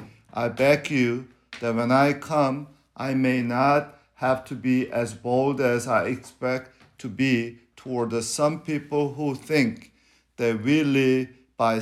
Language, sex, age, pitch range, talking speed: English, male, 50-69, 115-145 Hz, 145 wpm